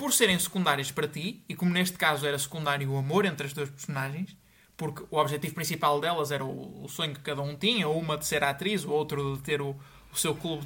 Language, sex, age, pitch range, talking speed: Portuguese, male, 20-39, 155-200 Hz, 225 wpm